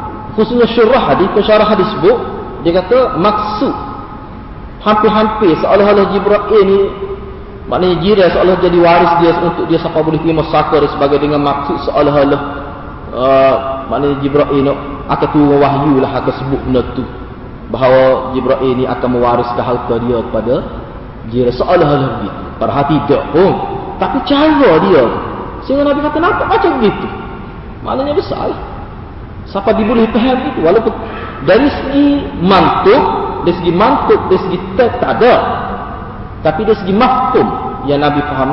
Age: 30-49